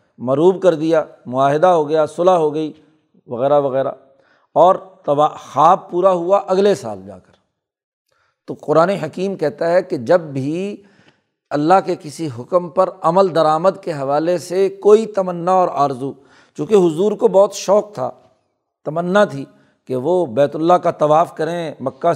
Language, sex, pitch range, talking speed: Urdu, male, 140-180 Hz, 155 wpm